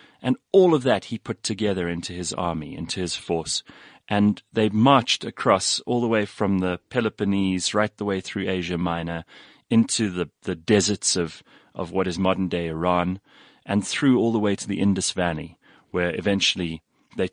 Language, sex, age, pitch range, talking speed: English, male, 30-49, 85-110 Hz, 175 wpm